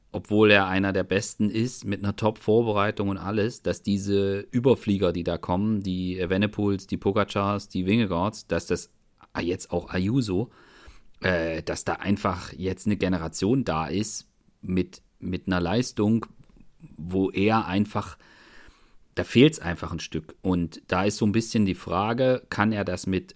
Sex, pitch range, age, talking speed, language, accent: male, 90-120 Hz, 40-59, 155 wpm, German, German